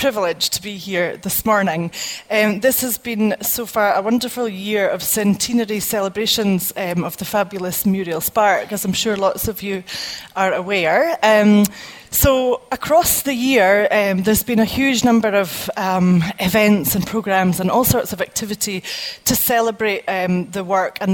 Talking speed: 165 wpm